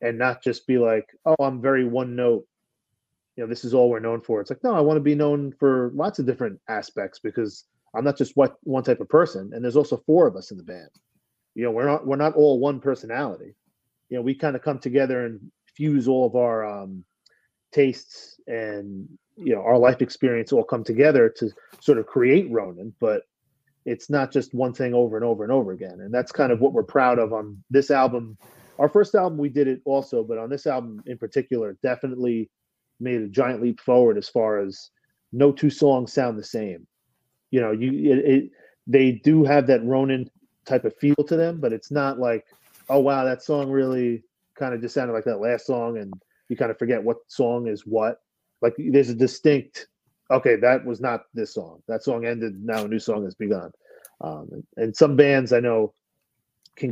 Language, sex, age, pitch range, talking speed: English, male, 30-49, 115-140 Hz, 215 wpm